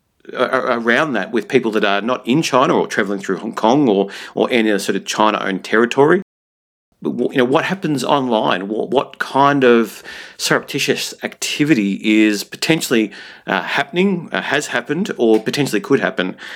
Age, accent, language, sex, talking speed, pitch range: 40-59, Australian, English, male, 165 wpm, 100-120 Hz